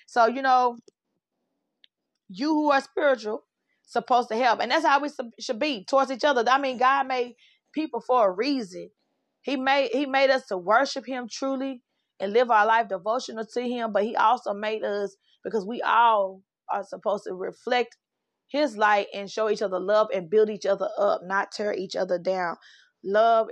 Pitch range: 200-260 Hz